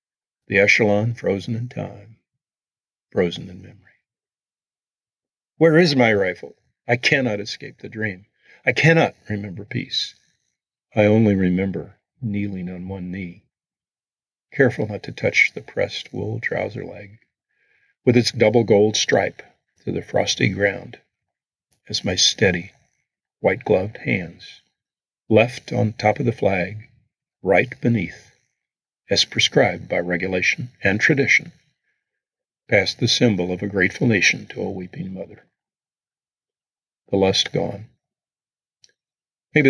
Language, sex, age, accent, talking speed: English, male, 50-69, American, 120 wpm